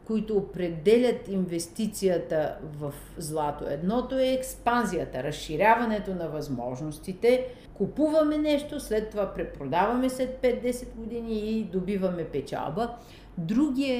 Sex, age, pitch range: female, 50-69, 180-245 Hz